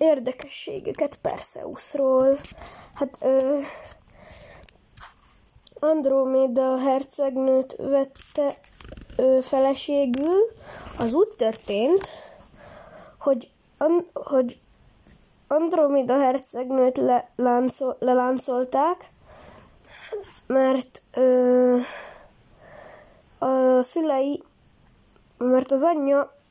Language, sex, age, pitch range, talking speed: Hungarian, female, 10-29, 255-300 Hz, 50 wpm